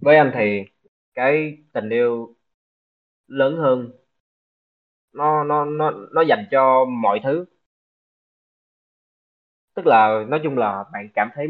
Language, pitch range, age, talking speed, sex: Vietnamese, 110-155 Hz, 20-39, 125 wpm, male